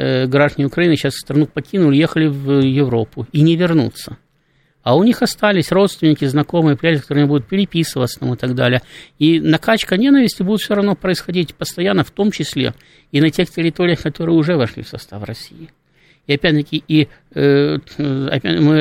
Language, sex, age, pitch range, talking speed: Russian, male, 50-69, 130-160 Hz, 160 wpm